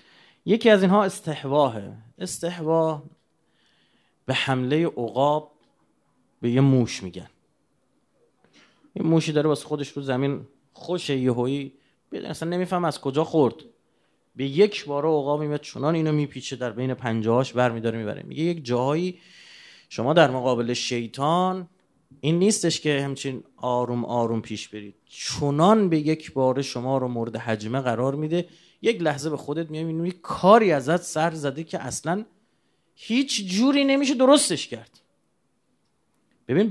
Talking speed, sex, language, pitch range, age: 145 wpm, male, Persian, 130-180 Hz, 30-49